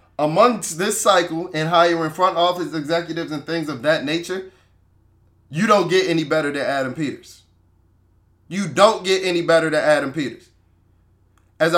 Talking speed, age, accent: 155 wpm, 20-39, American